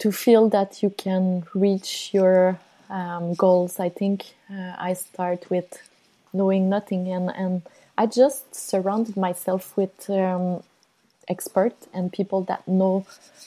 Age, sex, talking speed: 20-39, female, 135 wpm